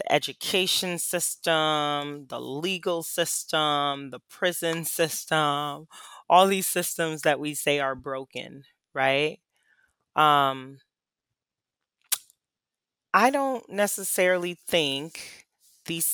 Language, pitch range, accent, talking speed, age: English, 135-165 Hz, American, 85 wpm, 20-39